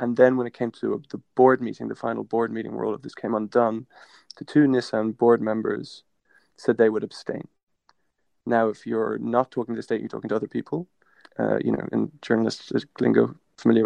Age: 20-39